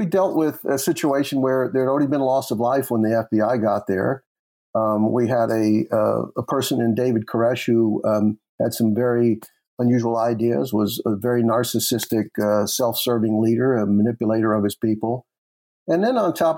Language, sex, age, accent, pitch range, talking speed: English, male, 50-69, American, 110-135 Hz, 190 wpm